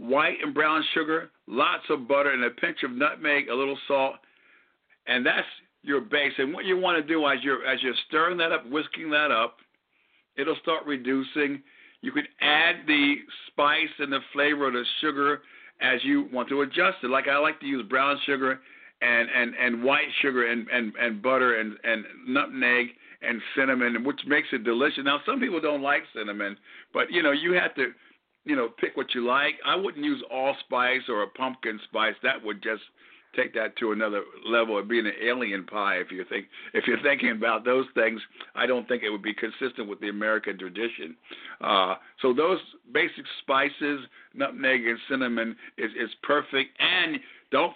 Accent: American